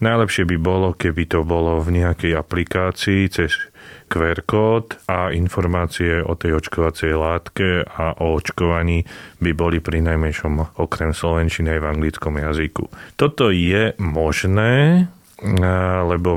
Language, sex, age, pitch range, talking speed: Slovak, male, 30-49, 80-95 Hz, 130 wpm